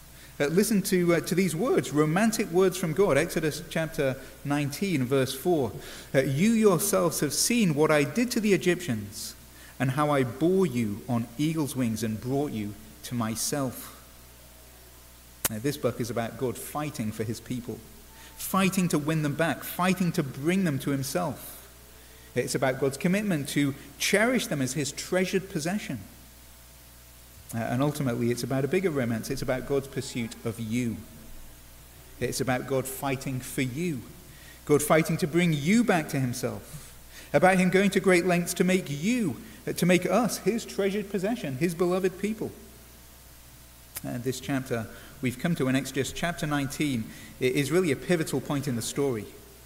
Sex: male